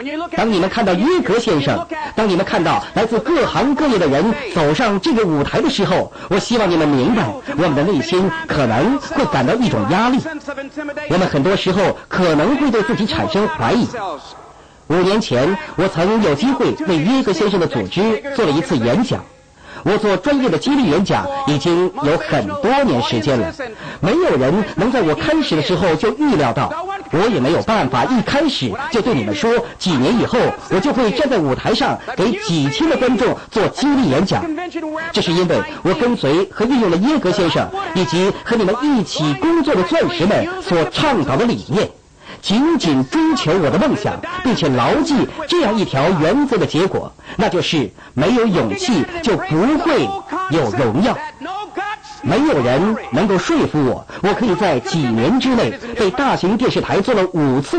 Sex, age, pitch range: male, 50-69, 185-310 Hz